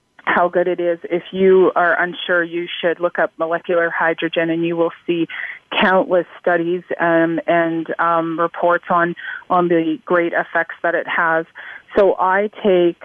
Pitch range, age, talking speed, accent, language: 170-185 Hz, 30-49, 160 wpm, American, English